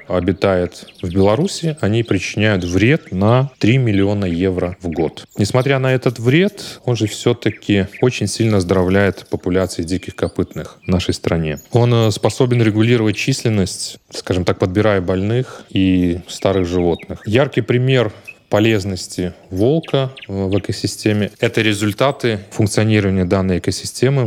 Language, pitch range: Russian, 95-120 Hz